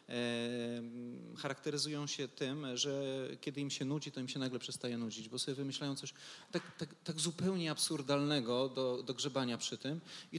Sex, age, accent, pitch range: male, 30-49, native, 125-155 Hz